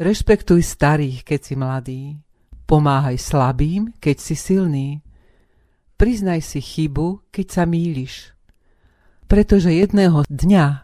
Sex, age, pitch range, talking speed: female, 40-59, 140-185 Hz, 105 wpm